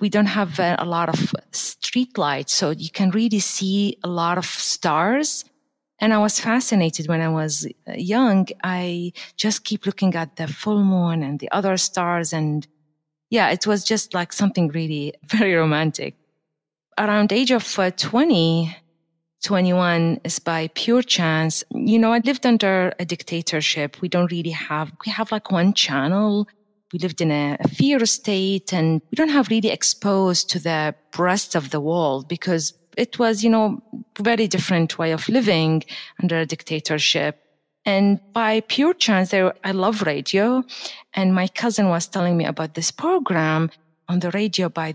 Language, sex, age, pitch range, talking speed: English, female, 30-49, 160-215 Hz, 165 wpm